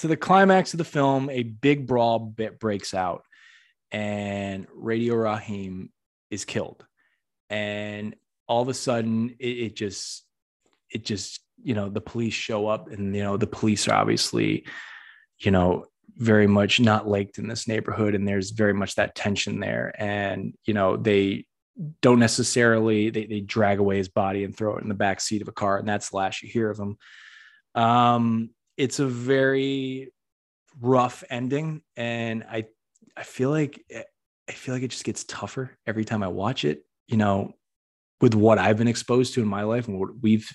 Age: 20-39